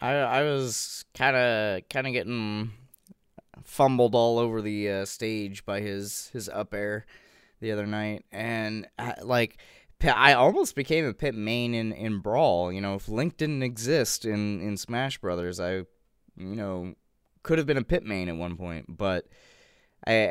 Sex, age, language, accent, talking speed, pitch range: male, 20-39, English, American, 170 wpm, 95-125 Hz